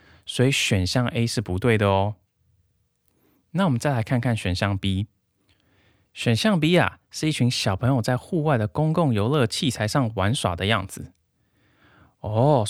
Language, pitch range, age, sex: Chinese, 100-130 Hz, 20-39, male